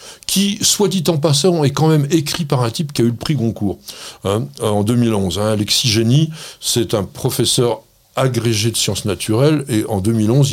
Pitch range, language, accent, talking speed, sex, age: 115-170 Hz, French, French, 195 wpm, male, 60-79